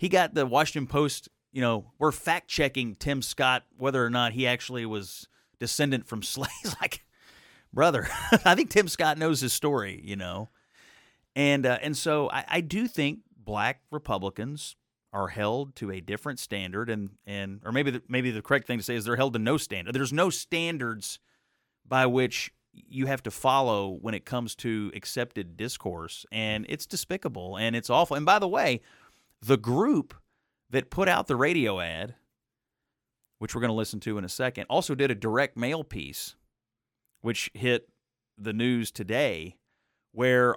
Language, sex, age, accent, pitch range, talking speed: English, male, 30-49, American, 105-135 Hz, 175 wpm